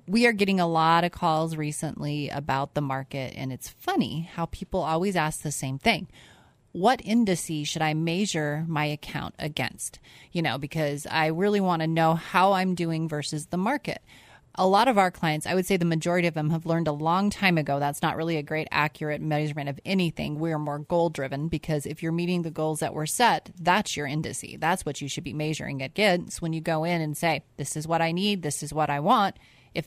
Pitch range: 150-190 Hz